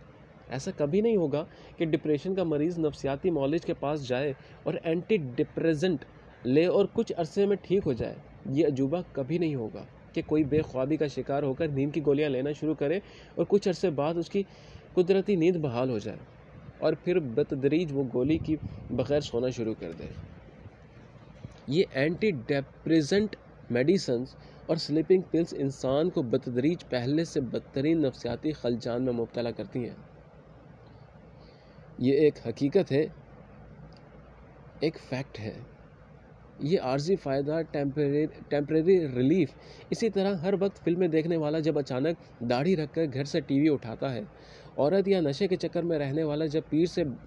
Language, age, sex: Hindi, 30-49, male